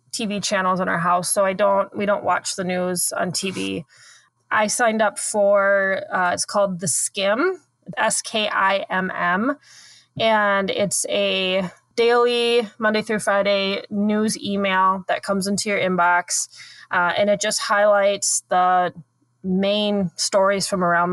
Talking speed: 140 wpm